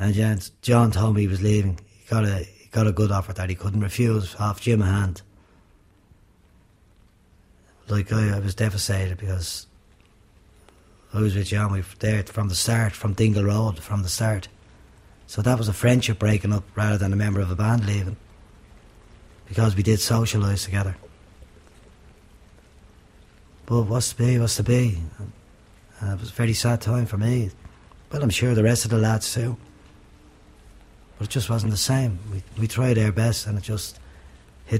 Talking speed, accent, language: 180 wpm, Irish, English